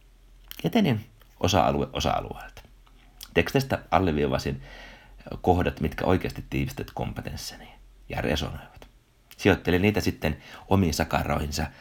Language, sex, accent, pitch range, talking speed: Finnish, male, native, 75-100 Hz, 85 wpm